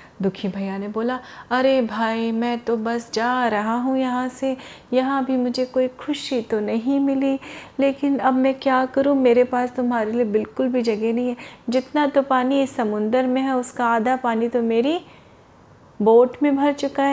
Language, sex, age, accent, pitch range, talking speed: Hindi, female, 30-49, native, 230-265 Hz, 180 wpm